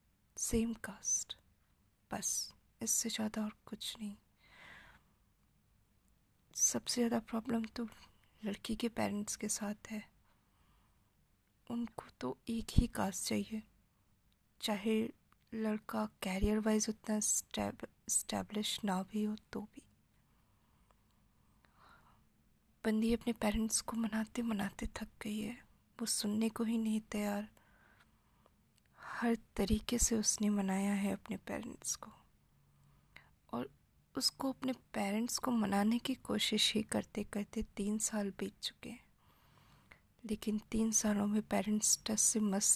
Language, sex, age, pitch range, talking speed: Hindi, female, 20-39, 205-225 Hz, 115 wpm